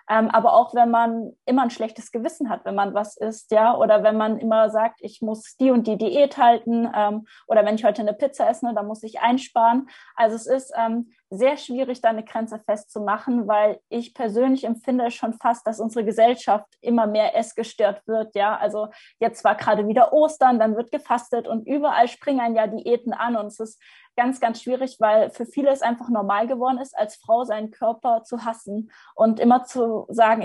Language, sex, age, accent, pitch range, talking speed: German, female, 20-39, German, 220-250 Hz, 200 wpm